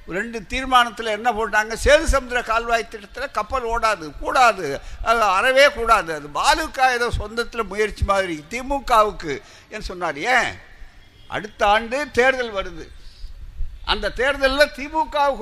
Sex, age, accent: male, 60-79, native